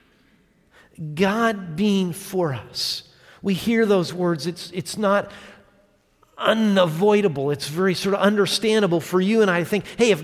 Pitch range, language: 190-245 Hz, English